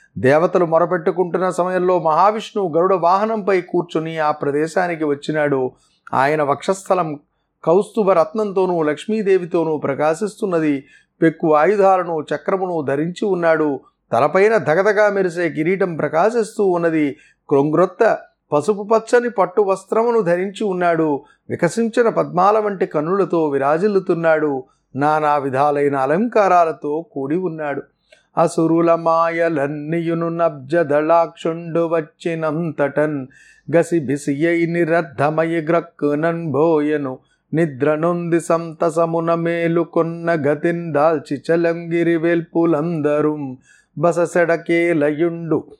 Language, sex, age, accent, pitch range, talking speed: Telugu, male, 30-49, native, 155-185 Hz, 60 wpm